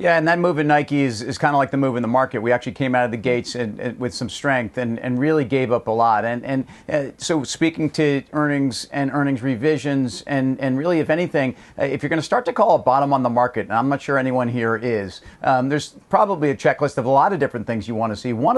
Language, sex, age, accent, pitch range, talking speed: English, male, 40-59, American, 130-155 Hz, 275 wpm